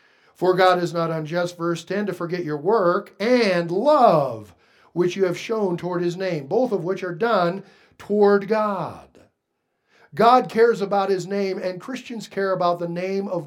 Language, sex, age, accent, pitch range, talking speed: English, male, 50-69, American, 170-215 Hz, 175 wpm